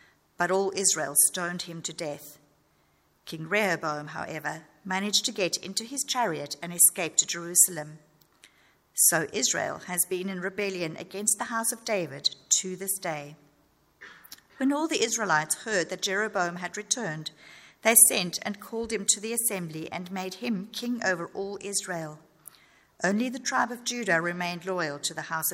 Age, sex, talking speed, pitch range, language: 50-69, female, 160 wpm, 160-200 Hz, English